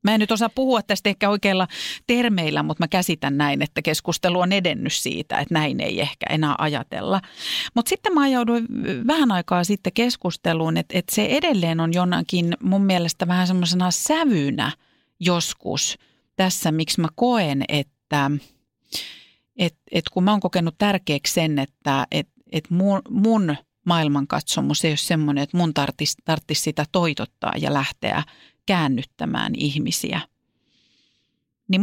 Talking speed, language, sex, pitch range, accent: 145 wpm, Finnish, female, 155-205 Hz, native